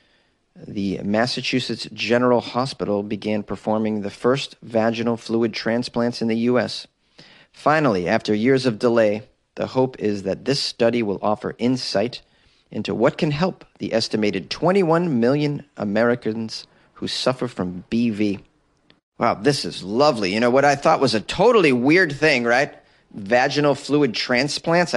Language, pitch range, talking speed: English, 110-135 Hz, 140 wpm